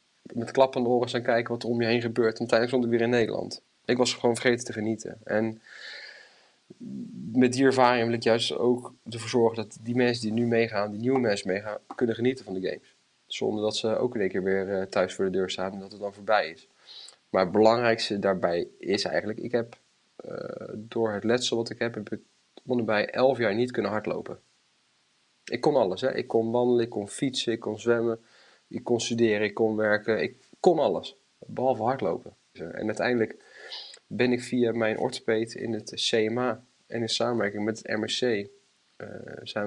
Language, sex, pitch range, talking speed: Dutch, male, 110-125 Hz, 205 wpm